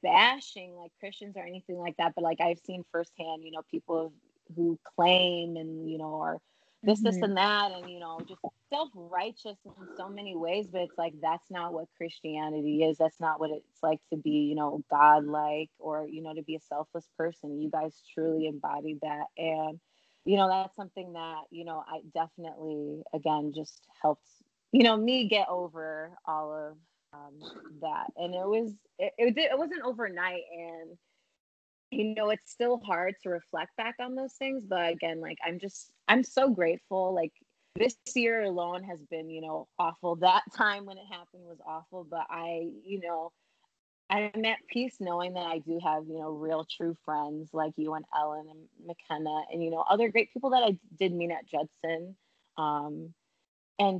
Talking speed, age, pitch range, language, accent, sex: 185 wpm, 20-39, 160-190 Hz, English, American, female